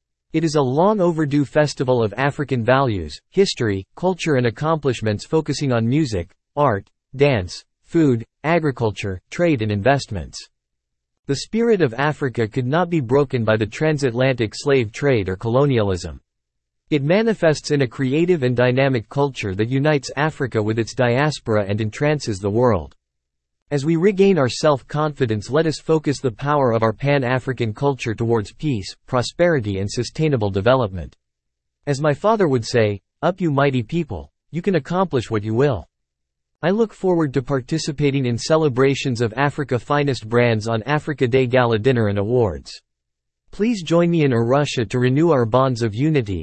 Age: 40-59